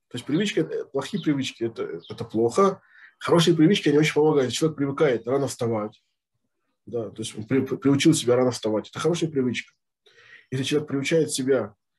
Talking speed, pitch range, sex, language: 175 wpm, 120-155 Hz, male, Russian